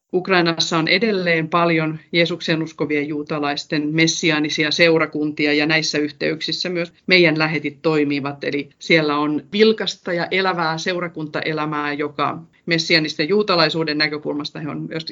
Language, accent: Finnish, native